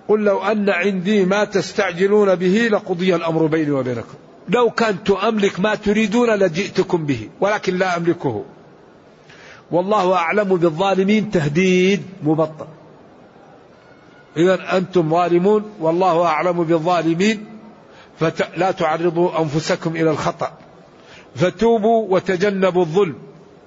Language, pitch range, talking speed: Arabic, 175-210 Hz, 100 wpm